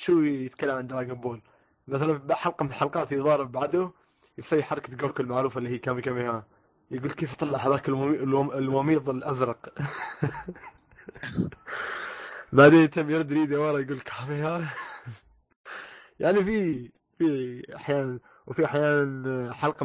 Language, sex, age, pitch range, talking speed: Arabic, male, 20-39, 125-150 Hz, 120 wpm